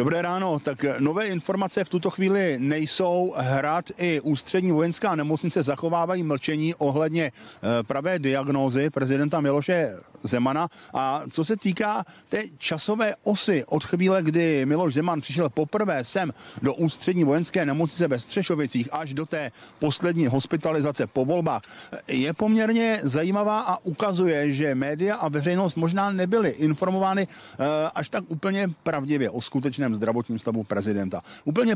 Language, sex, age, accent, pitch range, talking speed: Czech, male, 40-59, native, 140-180 Hz, 135 wpm